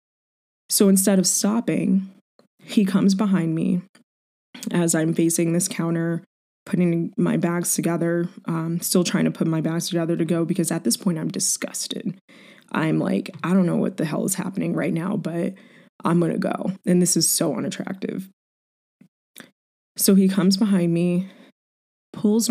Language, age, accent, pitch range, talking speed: English, 20-39, American, 170-205 Hz, 160 wpm